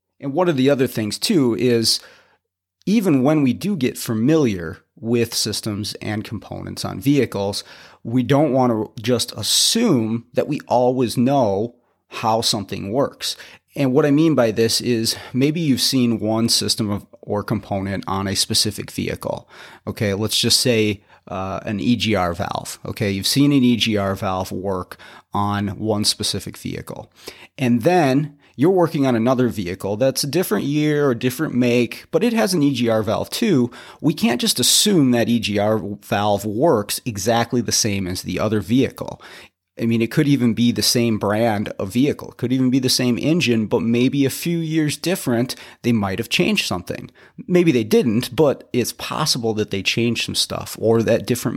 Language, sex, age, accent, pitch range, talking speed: English, male, 30-49, American, 105-130 Hz, 175 wpm